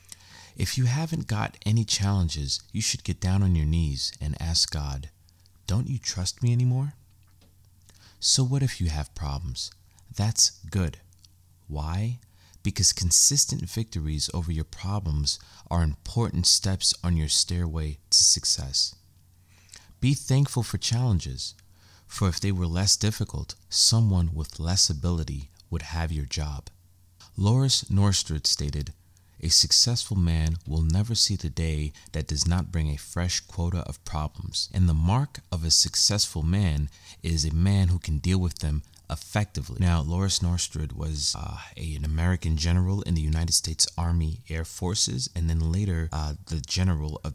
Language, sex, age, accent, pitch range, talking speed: English, male, 30-49, American, 80-100 Hz, 150 wpm